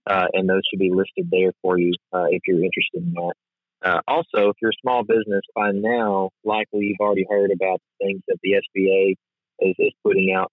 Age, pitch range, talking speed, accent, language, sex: 30-49, 95-110 Hz, 210 wpm, American, English, male